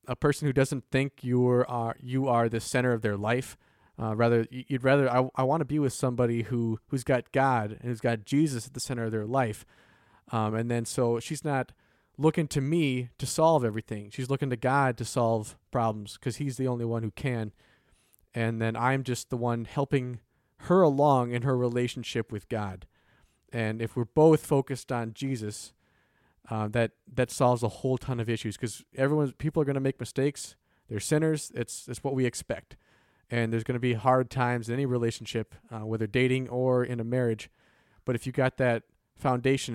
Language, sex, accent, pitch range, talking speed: English, male, American, 115-130 Hz, 200 wpm